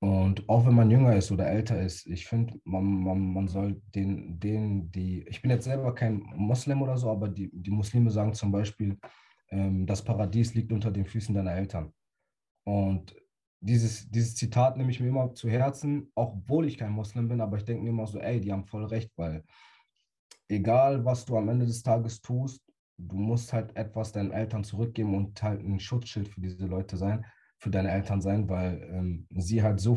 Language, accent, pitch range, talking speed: English, German, 95-115 Hz, 200 wpm